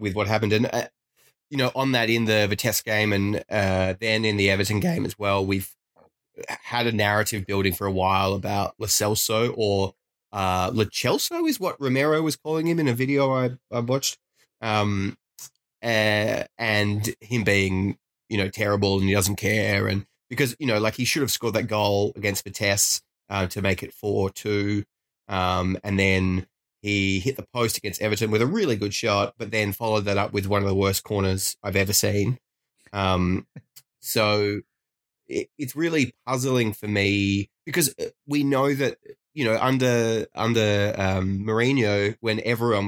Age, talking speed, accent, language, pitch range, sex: 20-39, 175 wpm, Australian, English, 100-115 Hz, male